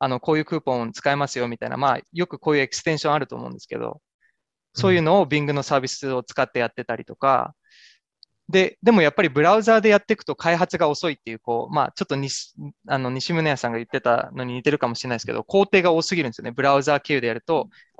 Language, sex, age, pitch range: Japanese, male, 20-39, 135-195 Hz